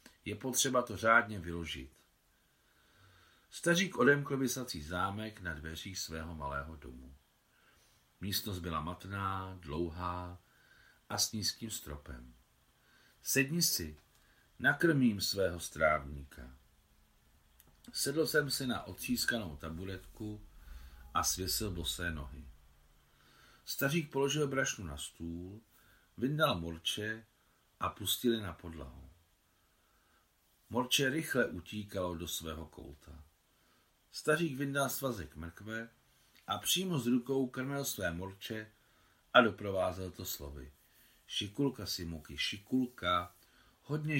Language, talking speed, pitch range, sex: Czech, 100 wpm, 80-120 Hz, male